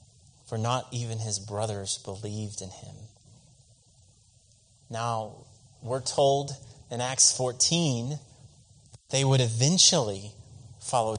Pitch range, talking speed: 115-150 Hz, 95 wpm